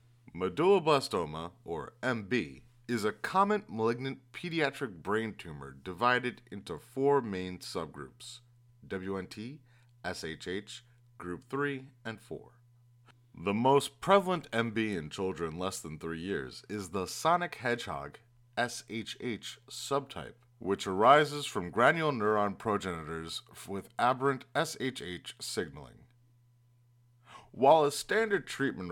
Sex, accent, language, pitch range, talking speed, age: male, American, English, 95-125 Hz, 105 wpm, 30-49